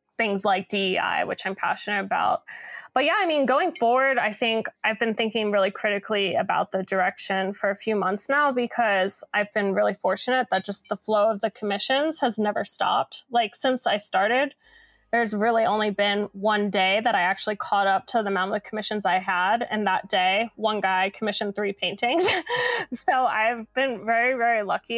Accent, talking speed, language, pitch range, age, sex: American, 190 wpm, English, 200-240 Hz, 10-29, female